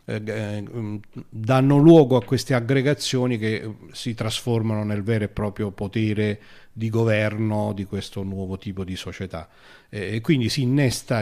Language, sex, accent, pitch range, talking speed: Italian, male, native, 105-125 Hz, 135 wpm